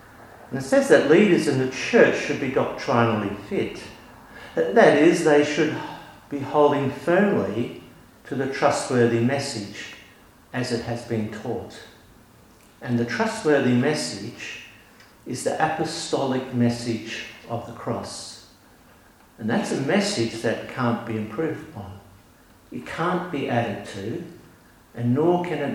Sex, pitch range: male, 115-145 Hz